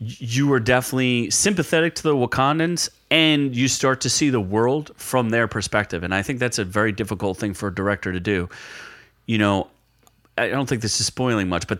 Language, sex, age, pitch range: English, male, 30-49, 100-125 Hz